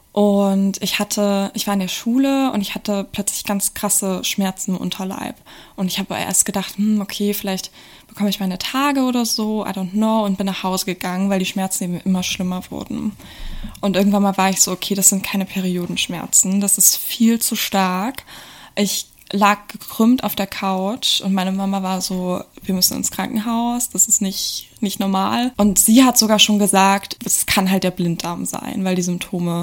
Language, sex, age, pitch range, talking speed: German, female, 20-39, 185-215 Hz, 195 wpm